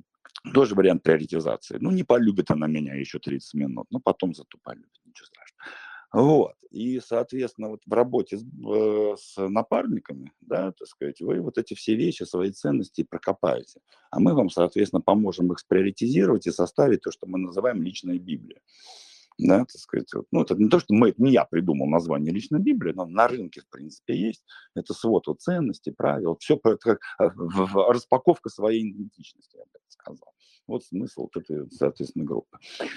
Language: Russian